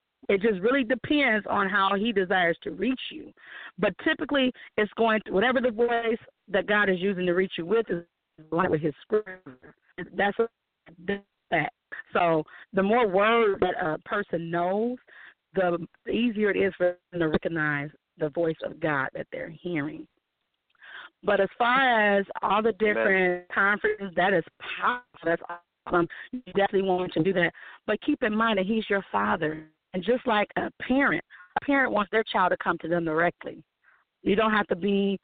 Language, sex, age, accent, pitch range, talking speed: English, female, 30-49, American, 175-220 Hz, 175 wpm